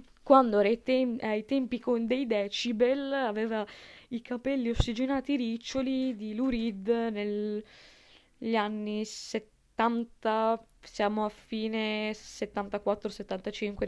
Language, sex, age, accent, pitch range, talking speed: Italian, female, 20-39, native, 195-230 Hz, 100 wpm